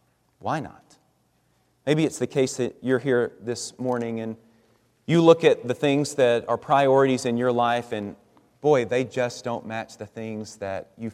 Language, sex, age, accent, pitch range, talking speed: English, male, 30-49, American, 115-145 Hz, 180 wpm